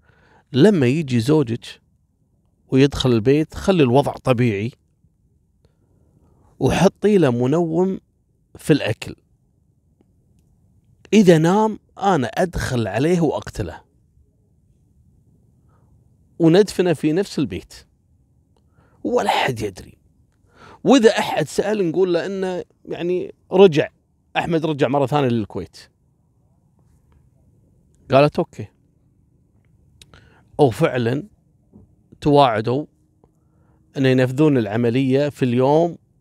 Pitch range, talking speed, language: 120-165 Hz, 80 wpm, Arabic